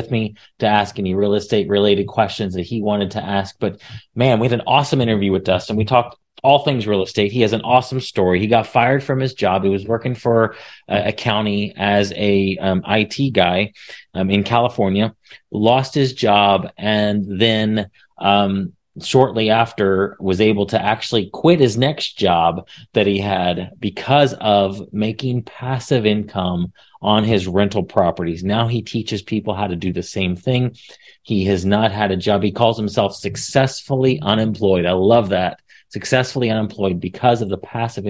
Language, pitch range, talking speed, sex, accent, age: English, 100-120 Hz, 175 wpm, male, American, 30-49